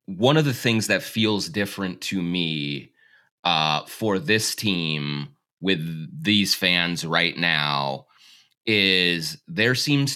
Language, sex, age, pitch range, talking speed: English, male, 30-49, 85-100 Hz, 125 wpm